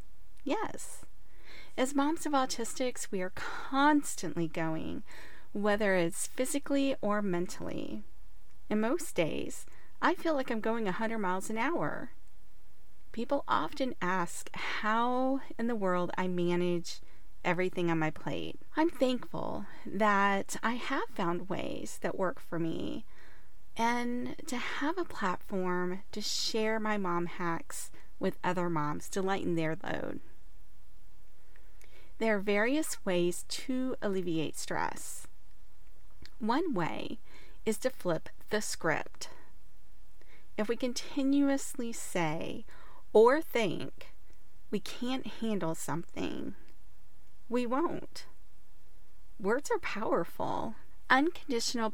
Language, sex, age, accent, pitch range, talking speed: English, female, 30-49, American, 180-260 Hz, 110 wpm